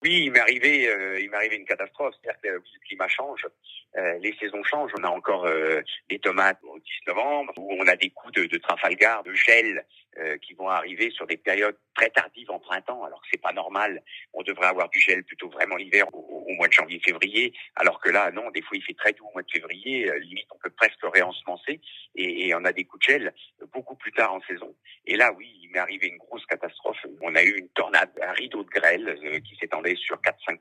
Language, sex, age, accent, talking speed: French, male, 50-69, French, 235 wpm